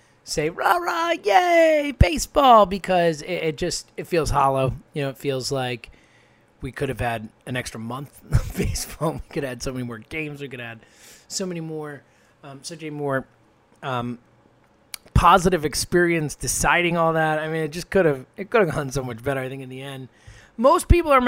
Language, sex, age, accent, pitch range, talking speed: English, male, 20-39, American, 130-175 Hz, 195 wpm